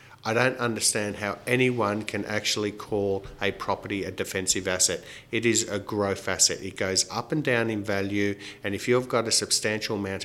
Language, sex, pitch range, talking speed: English, male, 100-115 Hz, 185 wpm